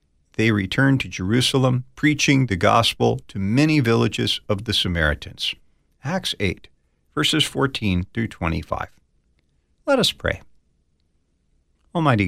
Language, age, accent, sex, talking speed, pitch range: English, 50-69, American, male, 110 wpm, 85-125 Hz